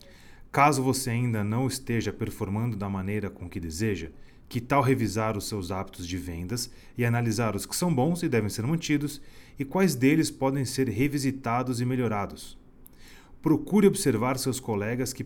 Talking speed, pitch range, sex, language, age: 165 wpm, 105-130 Hz, male, Portuguese, 30-49